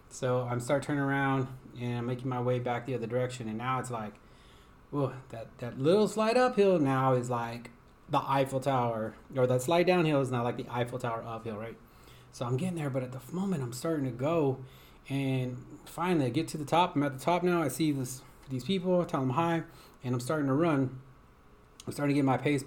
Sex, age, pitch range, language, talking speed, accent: male, 30-49, 125-150 Hz, English, 230 wpm, American